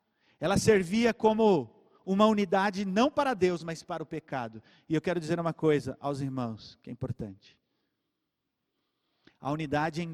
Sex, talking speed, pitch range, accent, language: male, 155 wpm, 115-160 Hz, Brazilian, Portuguese